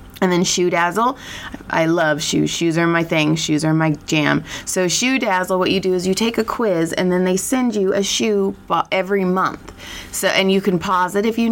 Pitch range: 160-195 Hz